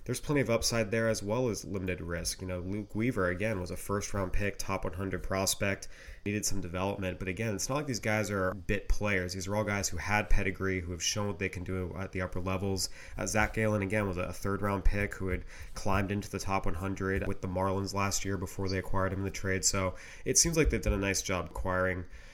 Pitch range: 95-110 Hz